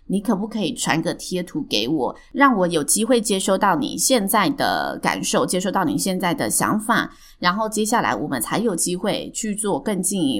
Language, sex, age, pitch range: Chinese, female, 20-39, 175-240 Hz